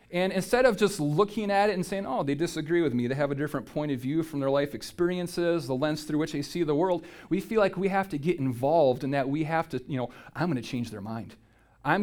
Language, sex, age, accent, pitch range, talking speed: English, male, 40-59, American, 150-190 Hz, 275 wpm